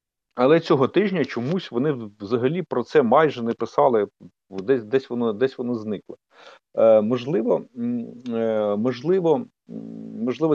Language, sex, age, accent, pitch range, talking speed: Ukrainian, male, 50-69, native, 115-145 Hz, 125 wpm